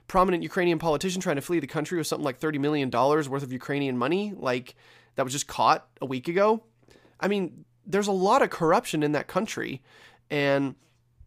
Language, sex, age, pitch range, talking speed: English, male, 30-49, 135-185 Hz, 190 wpm